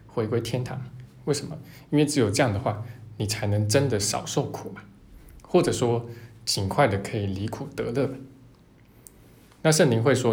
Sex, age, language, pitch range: male, 20-39, Chinese, 105-130 Hz